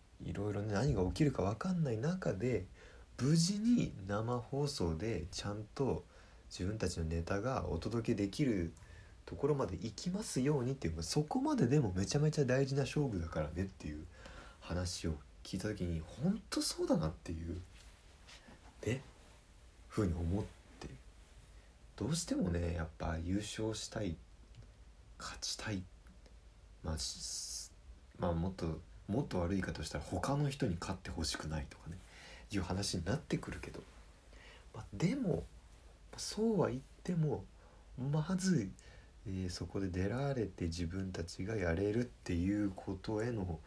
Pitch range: 85-105 Hz